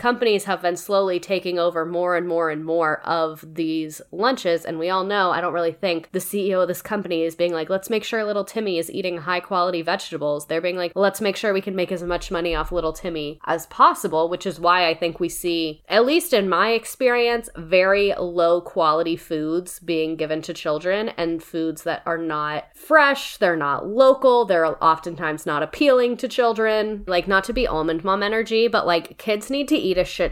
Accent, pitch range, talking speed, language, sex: American, 165-215 Hz, 215 wpm, English, female